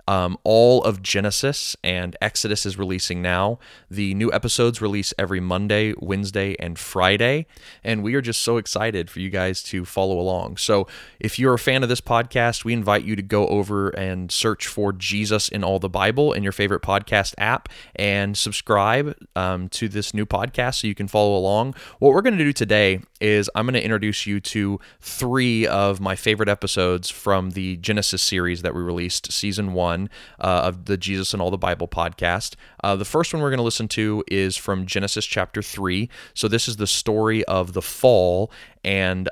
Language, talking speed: English, 195 wpm